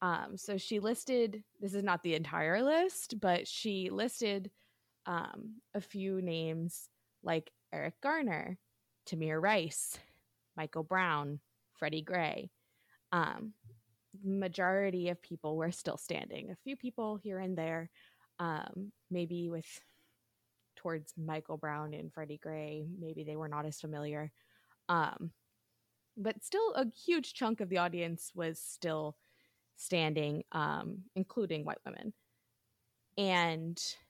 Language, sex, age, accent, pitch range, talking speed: English, female, 20-39, American, 155-195 Hz, 125 wpm